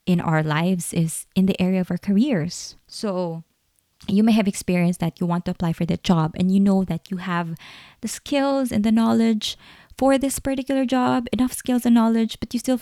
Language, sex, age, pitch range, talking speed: English, female, 20-39, 170-215 Hz, 210 wpm